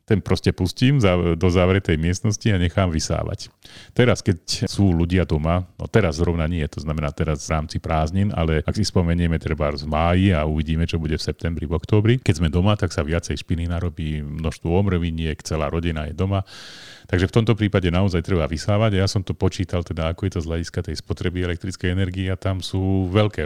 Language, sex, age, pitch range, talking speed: Slovak, male, 40-59, 85-105 Hz, 200 wpm